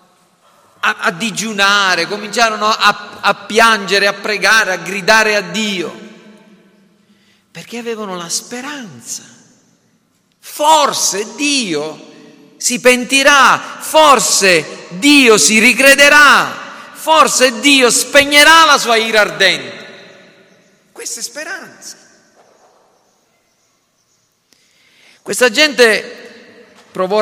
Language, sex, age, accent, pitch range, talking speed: Italian, male, 40-59, native, 155-235 Hz, 80 wpm